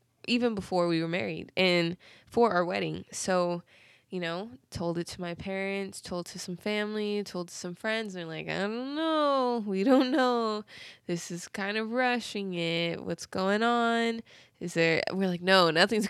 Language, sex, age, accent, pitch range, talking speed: English, female, 20-39, American, 170-210 Hz, 180 wpm